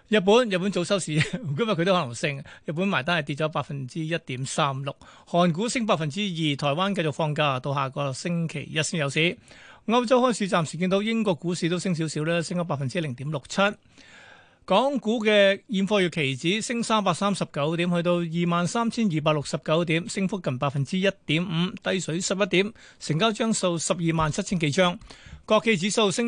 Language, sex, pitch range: Chinese, male, 155-205 Hz